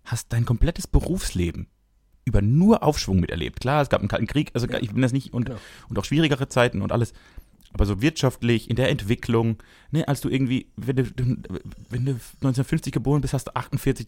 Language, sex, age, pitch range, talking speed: German, male, 30-49, 110-140 Hz, 195 wpm